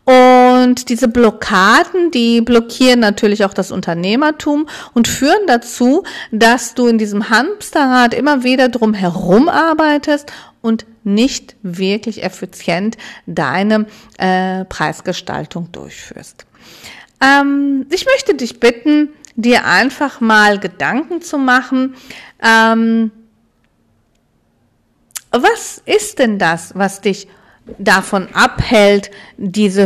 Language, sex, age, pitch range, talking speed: German, female, 40-59, 200-280 Hz, 105 wpm